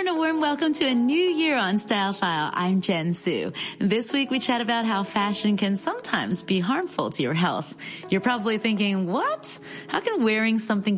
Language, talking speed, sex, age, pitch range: English, 190 wpm, female, 30-49, 175-250 Hz